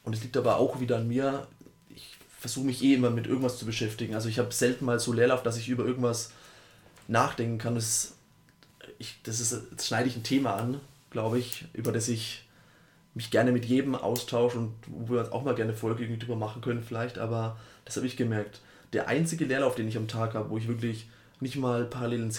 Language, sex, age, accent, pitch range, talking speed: German, male, 20-39, German, 115-135 Hz, 215 wpm